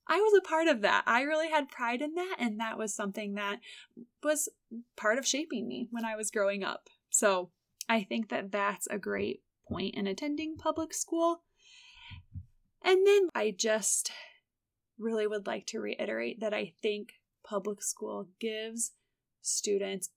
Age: 20-39